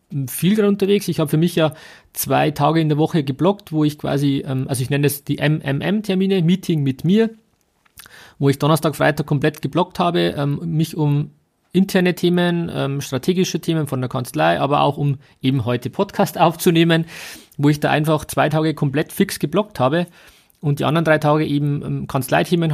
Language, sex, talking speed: German, male, 170 wpm